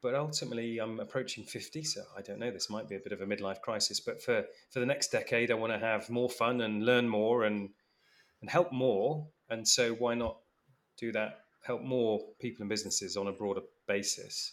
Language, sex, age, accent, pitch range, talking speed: English, male, 30-49, British, 100-125 Hz, 215 wpm